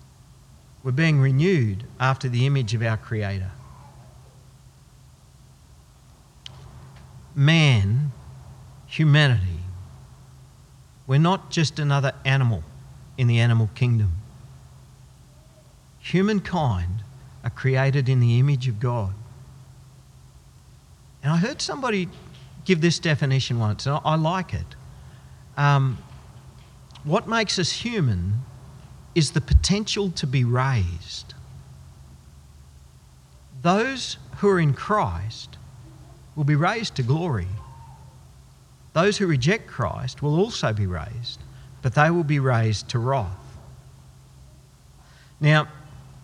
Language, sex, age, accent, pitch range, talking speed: English, male, 50-69, Australian, 115-155 Hz, 100 wpm